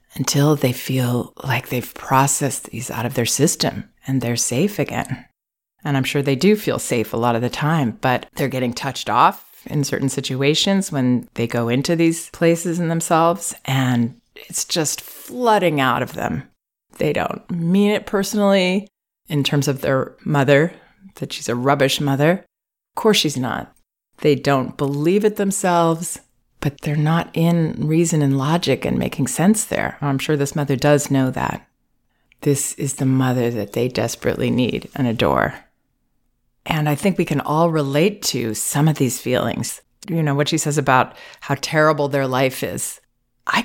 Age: 30-49